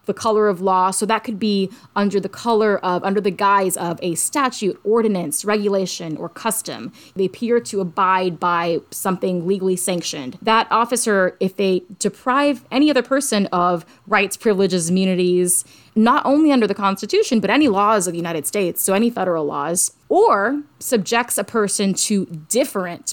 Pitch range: 180-225 Hz